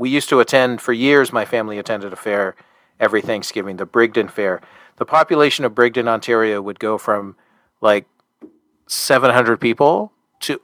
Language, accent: English, American